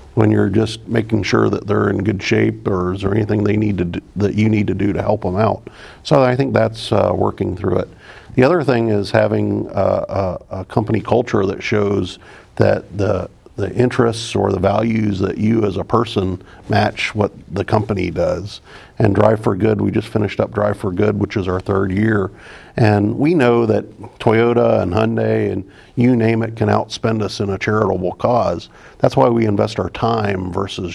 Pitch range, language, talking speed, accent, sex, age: 95-110 Hz, English, 210 wpm, American, male, 50-69